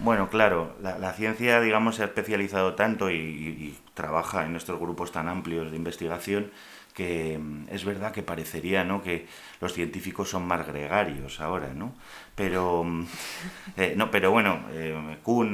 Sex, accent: male, Spanish